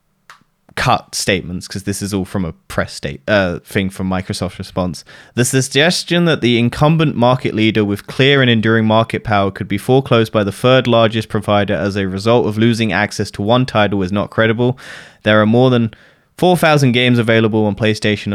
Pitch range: 105-125 Hz